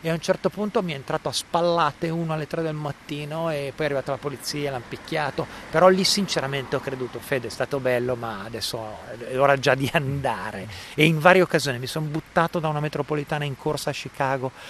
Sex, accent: male, native